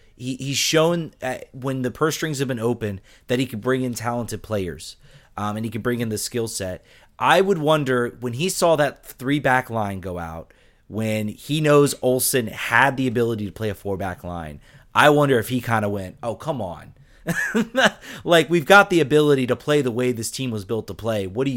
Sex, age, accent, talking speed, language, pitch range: male, 30-49, American, 215 wpm, English, 110-145 Hz